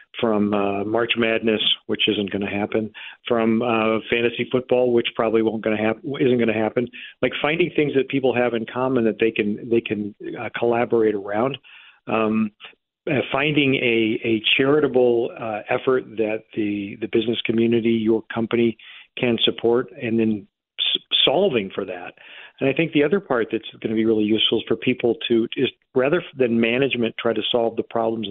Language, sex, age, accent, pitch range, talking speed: English, male, 40-59, American, 110-125 Hz, 180 wpm